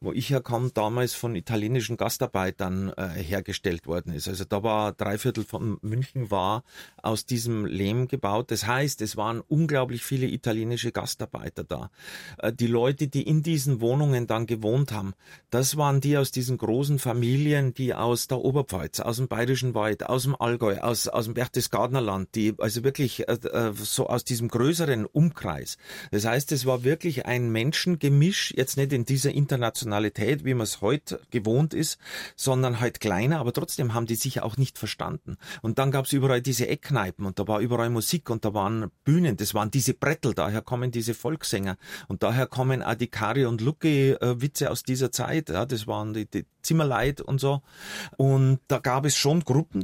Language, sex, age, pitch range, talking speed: German, male, 30-49, 110-135 Hz, 185 wpm